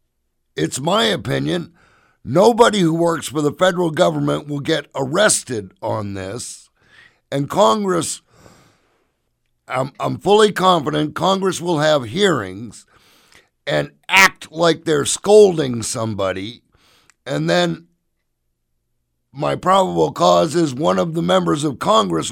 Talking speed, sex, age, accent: 115 wpm, male, 60-79, American